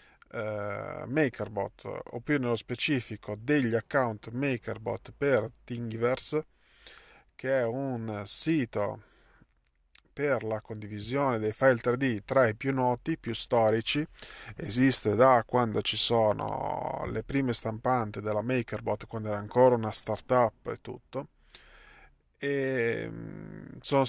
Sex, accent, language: male, native, Italian